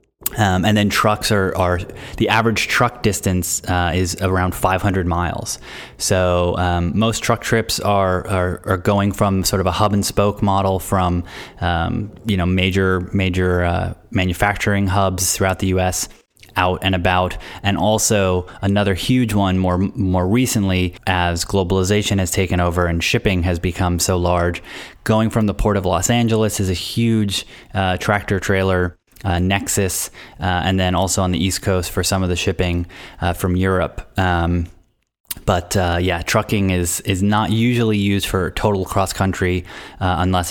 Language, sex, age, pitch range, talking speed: English, male, 20-39, 90-100 Hz, 165 wpm